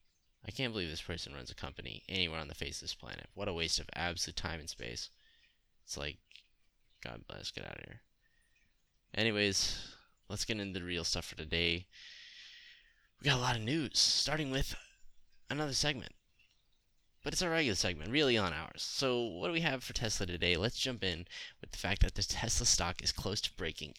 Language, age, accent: English, 10-29, American